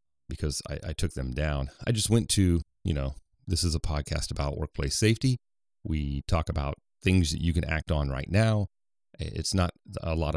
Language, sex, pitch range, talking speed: English, male, 75-95 Hz, 195 wpm